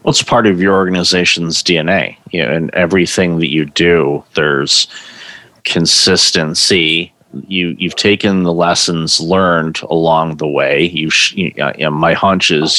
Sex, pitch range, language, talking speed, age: male, 80-90 Hz, English, 145 wpm, 30-49